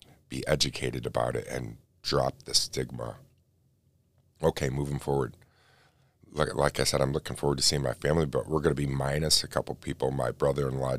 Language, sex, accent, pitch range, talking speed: English, male, American, 65-80 Hz, 180 wpm